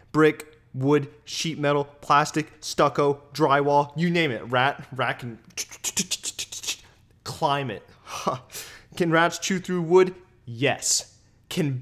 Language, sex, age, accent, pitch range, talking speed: English, male, 20-39, American, 125-170 Hz, 105 wpm